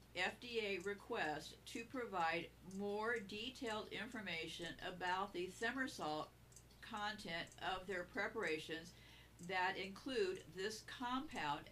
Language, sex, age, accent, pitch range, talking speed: English, female, 50-69, American, 180-230 Hz, 90 wpm